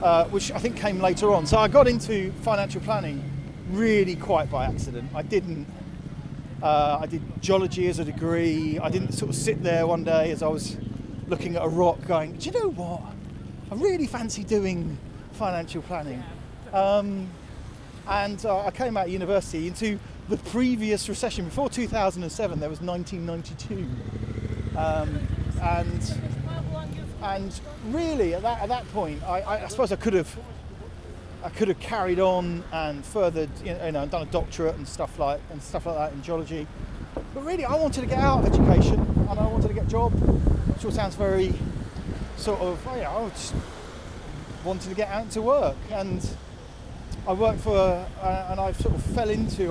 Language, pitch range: English, 145-200 Hz